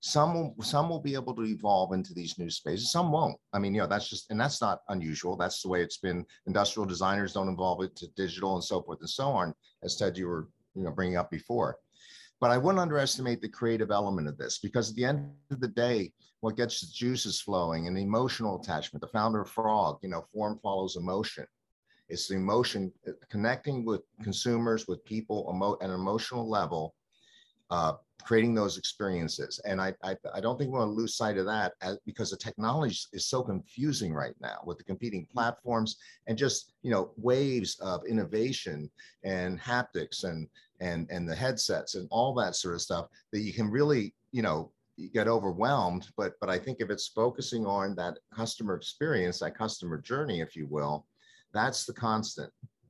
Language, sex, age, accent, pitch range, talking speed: English, male, 50-69, American, 90-120 Hz, 195 wpm